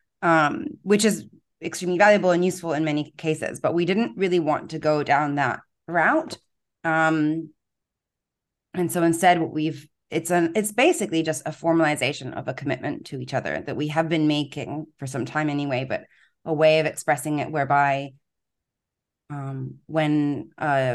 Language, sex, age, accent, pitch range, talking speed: English, female, 30-49, American, 140-170 Hz, 165 wpm